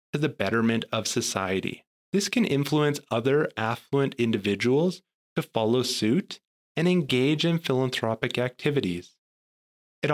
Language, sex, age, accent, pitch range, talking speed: English, male, 30-49, American, 115-160 Hz, 110 wpm